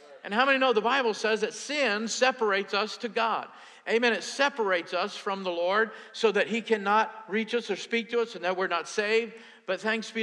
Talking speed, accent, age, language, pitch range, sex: 225 wpm, American, 50-69, English, 185-235 Hz, male